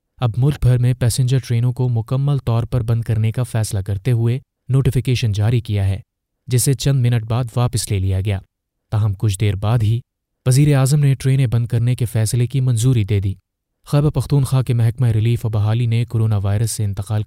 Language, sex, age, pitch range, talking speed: Urdu, male, 30-49, 105-125 Hz, 200 wpm